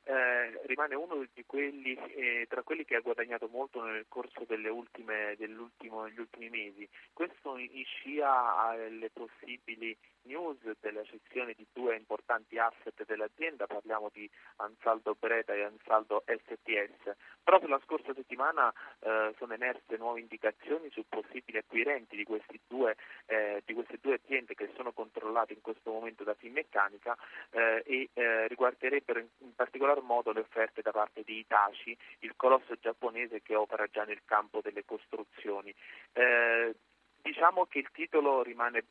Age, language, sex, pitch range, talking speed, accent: 30-49, Italian, male, 110-130 Hz, 150 wpm, native